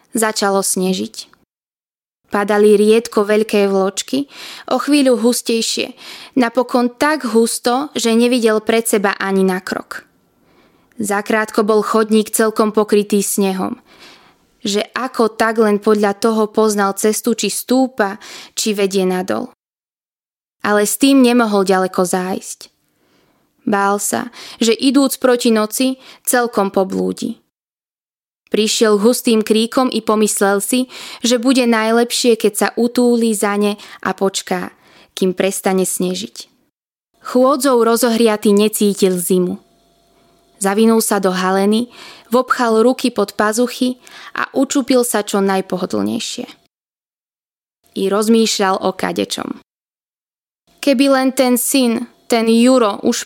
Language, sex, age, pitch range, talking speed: Slovak, female, 20-39, 200-245 Hz, 110 wpm